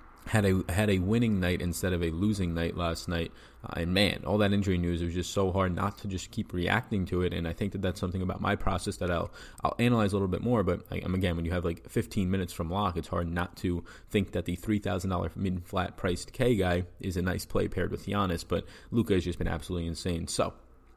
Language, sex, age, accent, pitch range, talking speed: English, male, 20-39, American, 90-110 Hz, 260 wpm